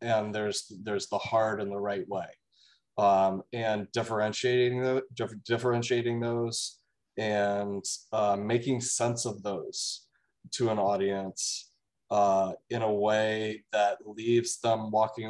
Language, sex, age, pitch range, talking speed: English, male, 20-39, 100-115 Hz, 130 wpm